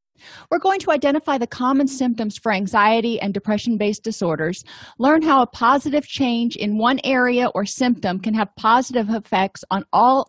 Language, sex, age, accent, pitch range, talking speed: English, female, 40-59, American, 195-260 Hz, 165 wpm